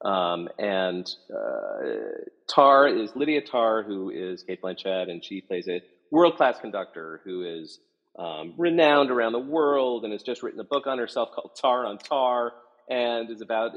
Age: 40-59